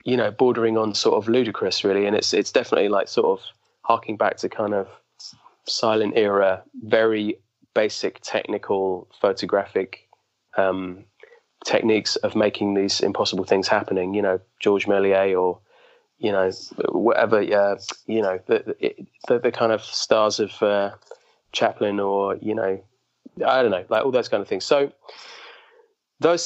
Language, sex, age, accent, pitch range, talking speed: English, male, 20-39, British, 105-140 Hz, 155 wpm